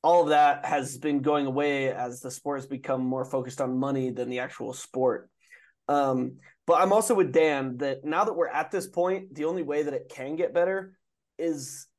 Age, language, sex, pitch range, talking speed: 20-39, English, male, 135-175 Hz, 210 wpm